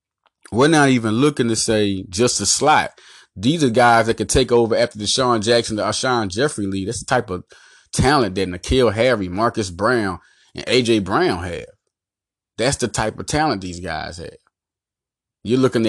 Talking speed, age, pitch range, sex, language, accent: 180 wpm, 30-49, 110-165 Hz, male, English, American